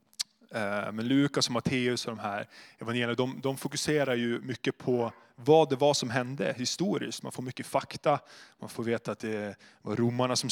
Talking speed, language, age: 170 wpm, Swedish, 20-39